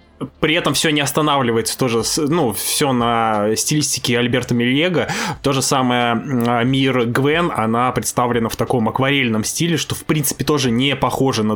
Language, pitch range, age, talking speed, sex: Russian, 115-145 Hz, 20-39, 155 wpm, male